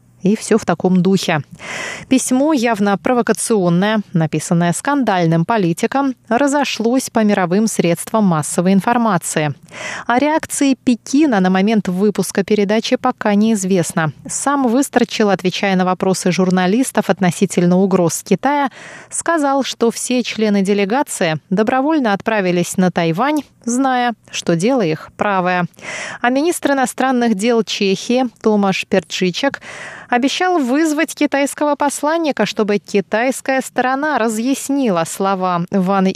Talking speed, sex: 110 wpm, female